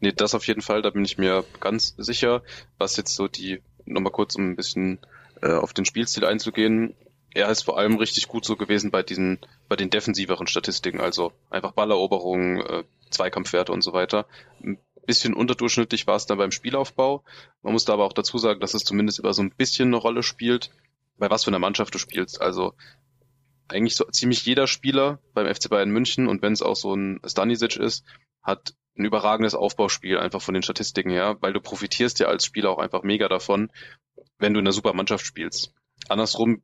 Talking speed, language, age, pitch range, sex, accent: 205 wpm, German, 20-39, 95-120 Hz, male, German